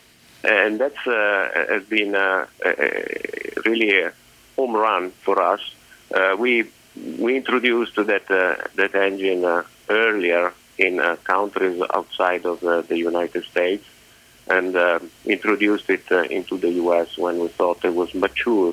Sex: male